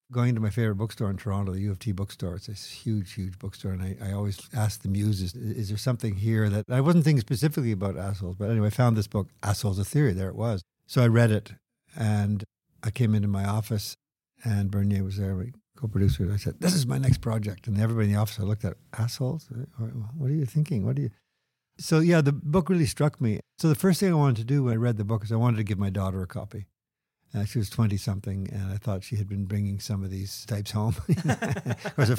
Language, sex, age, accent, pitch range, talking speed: English, male, 50-69, American, 105-130 Hz, 250 wpm